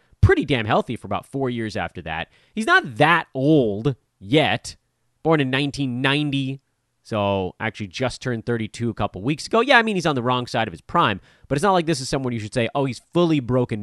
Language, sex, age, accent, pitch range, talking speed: English, male, 30-49, American, 110-155 Hz, 220 wpm